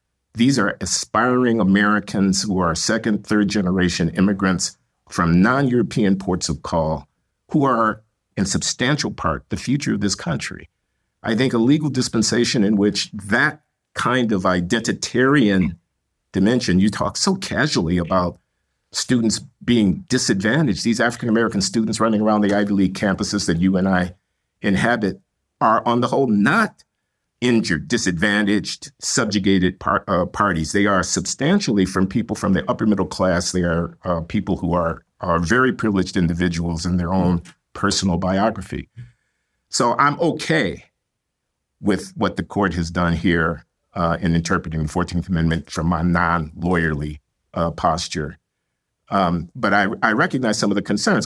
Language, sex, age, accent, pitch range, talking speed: English, male, 50-69, American, 85-110 Hz, 145 wpm